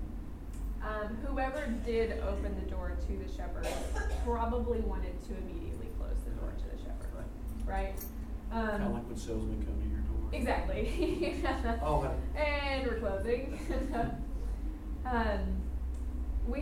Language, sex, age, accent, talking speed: English, female, 20-39, American, 125 wpm